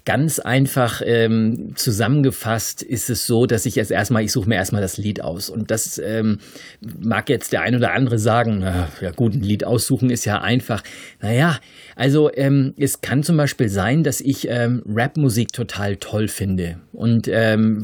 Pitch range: 110-130 Hz